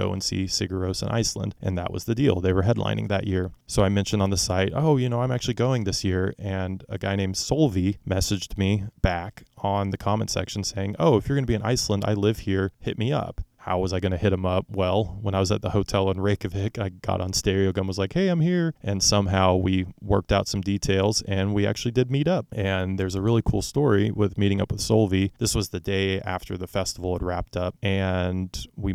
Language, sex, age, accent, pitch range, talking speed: English, male, 20-39, American, 95-105 Hz, 245 wpm